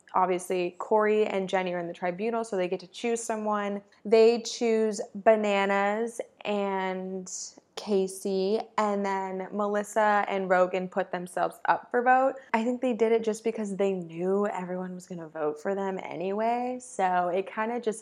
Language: English